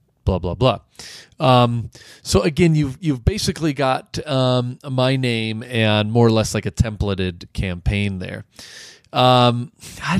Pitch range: 100-135 Hz